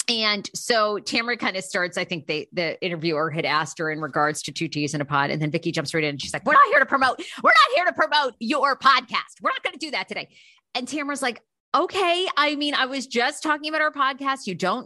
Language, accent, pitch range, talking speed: English, American, 180-260 Hz, 265 wpm